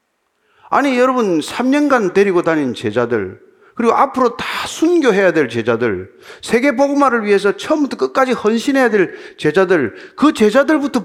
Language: Korean